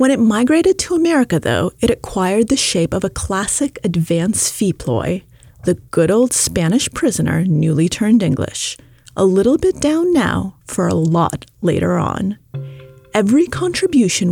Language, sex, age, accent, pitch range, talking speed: English, female, 30-49, American, 155-250 Hz, 150 wpm